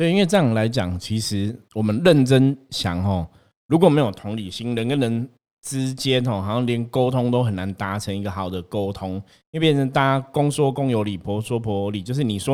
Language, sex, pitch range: Chinese, male, 100-130 Hz